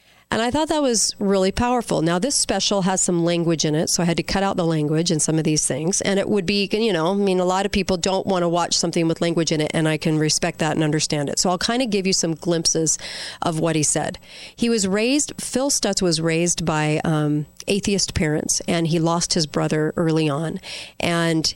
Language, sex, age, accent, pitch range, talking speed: English, female, 40-59, American, 155-195 Hz, 245 wpm